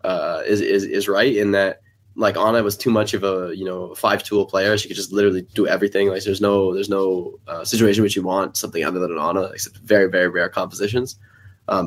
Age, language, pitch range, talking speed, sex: 20-39, English, 100-115 Hz, 225 wpm, male